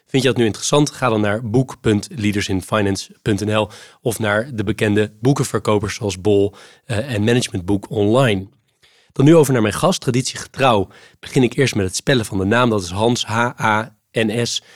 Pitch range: 110-135 Hz